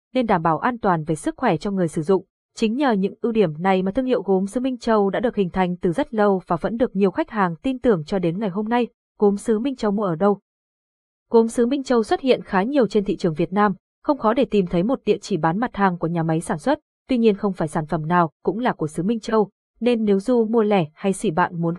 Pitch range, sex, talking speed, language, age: 185-235 Hz, female, 285 wpm, Vietnamese, 20-39